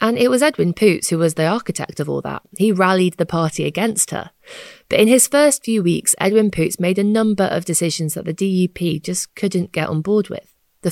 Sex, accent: female, British